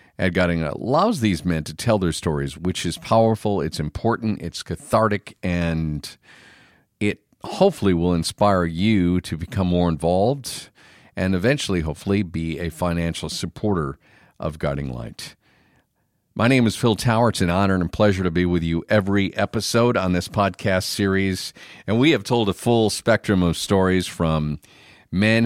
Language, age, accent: English, 50-69, American